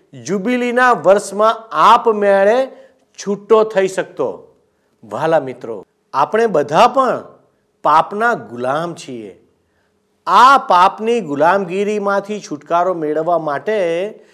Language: Gujarati